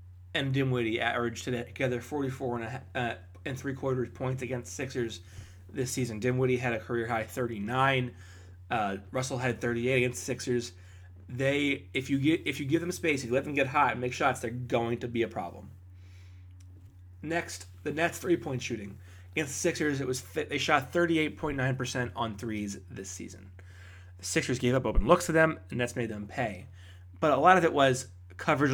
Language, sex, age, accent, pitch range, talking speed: English, male, 20-39, American, 90-135 Hz, 185 wpm